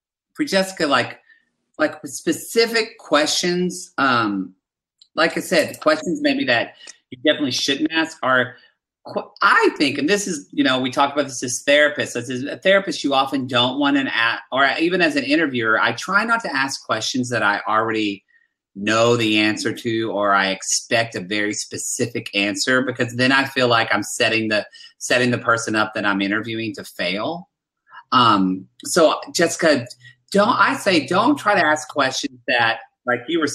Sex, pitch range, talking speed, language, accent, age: male, 120-170 Hz, 175 wpm, English, American, 30-49